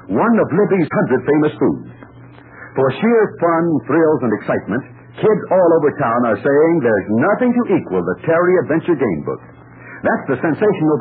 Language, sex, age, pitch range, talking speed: English, male, 60-79, 155-210 Hz, 165 wpm